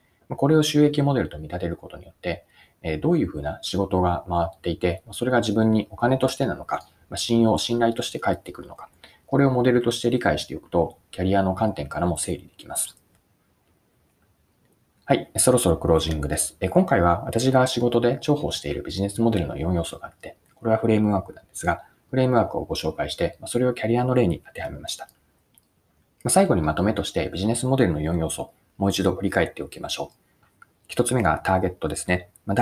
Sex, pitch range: male, 85-120 Hz